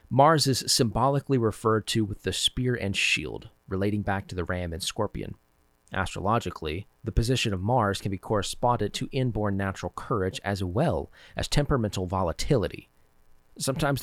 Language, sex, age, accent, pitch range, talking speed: English, male, 30-49, American, 95-125 Hz, 150 wpm